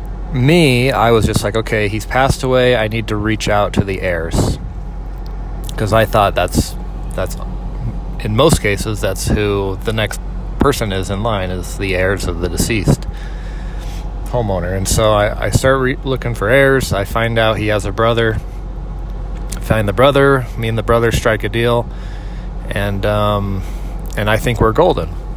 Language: English